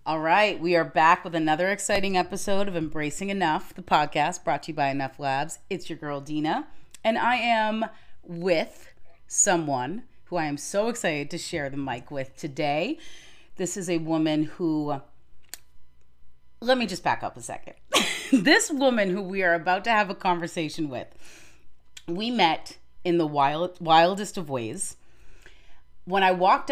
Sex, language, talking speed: female, English, 165 wpm